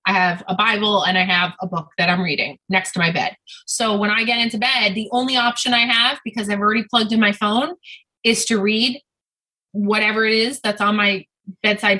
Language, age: English, 20-39